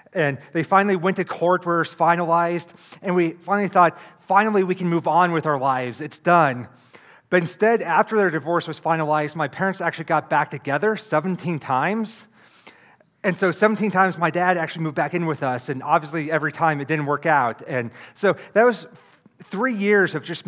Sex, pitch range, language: male, 150-185 Hz, English